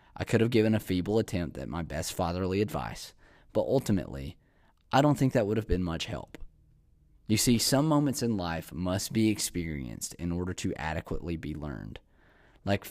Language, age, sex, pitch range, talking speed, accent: English, 20-39, male, 85-105 Hz, 180 wpm, American